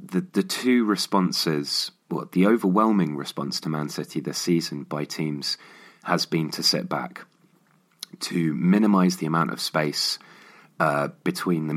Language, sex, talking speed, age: English, male, 155 wpm, 30-49